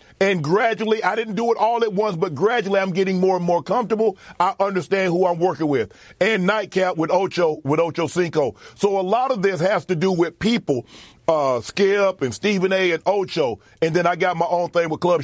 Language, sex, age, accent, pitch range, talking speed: English, male, 40-59, American, 165-205 Hz, 220 wpm